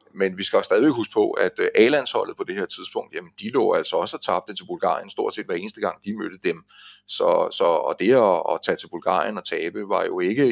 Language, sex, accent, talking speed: Danish, male, native, 245 wpm